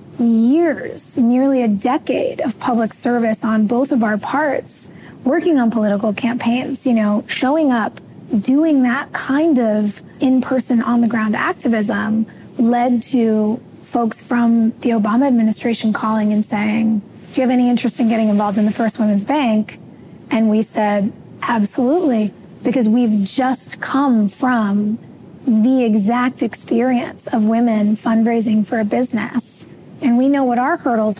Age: 20-39